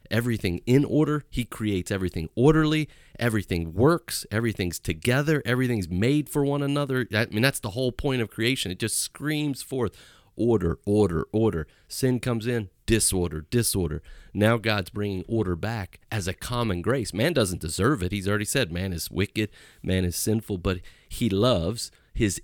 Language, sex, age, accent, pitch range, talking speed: English, male, 30-49, American, 90-120 Hz, 165 wpm